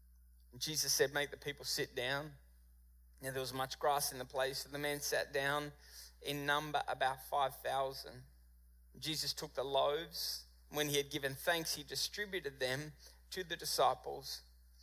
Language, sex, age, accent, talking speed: English, male, 20-39, Australian, 160 wpm